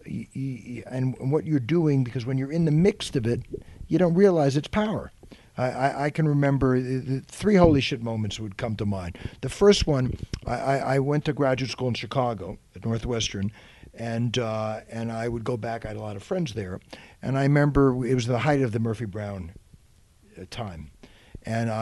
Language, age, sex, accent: English, 60-79, male, American